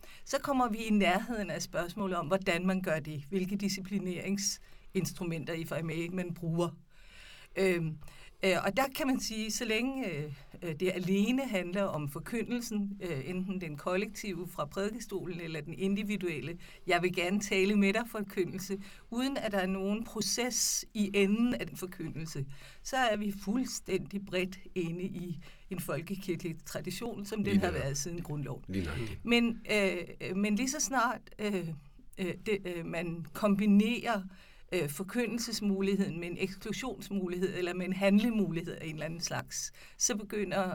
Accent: native